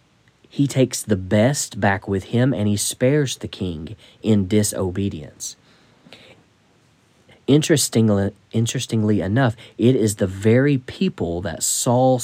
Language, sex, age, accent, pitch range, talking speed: English, male, 40-59, American, 105-125 Hz, 120 wpm